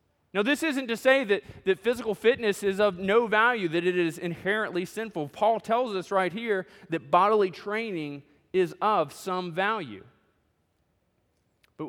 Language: English